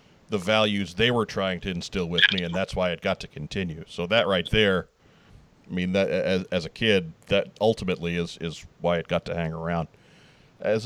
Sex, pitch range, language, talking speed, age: male, 90-115 Hz, English, 210 wpm, 40-59